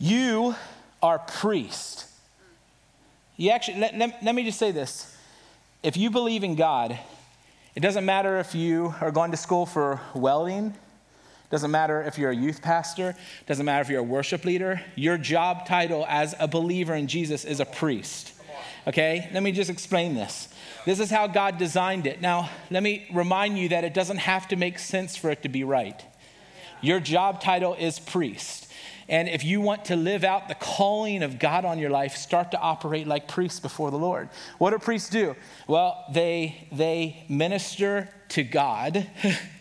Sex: male